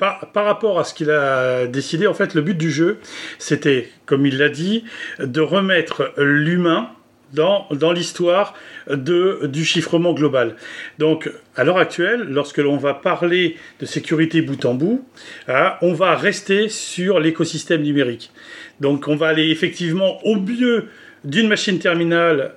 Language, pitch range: French, 155-195 Hz